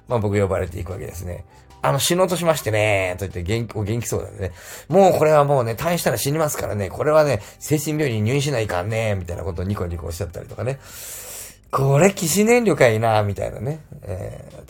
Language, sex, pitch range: Japanese, male, 95-130 Hz